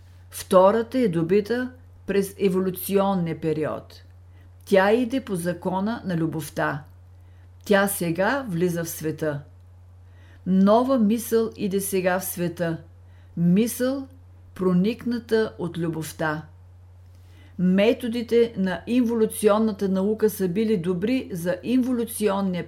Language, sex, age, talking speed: Bulgarian, female, 50-69, 95 wpm